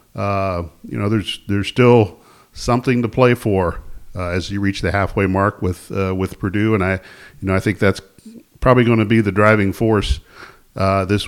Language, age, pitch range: English, 50-69, 95-110 Hz